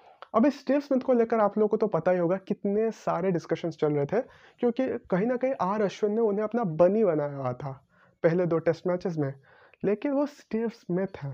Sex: male